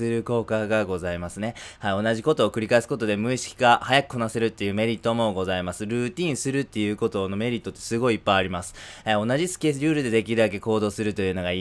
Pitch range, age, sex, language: 95-120 Hz, 20-39, male, Japanese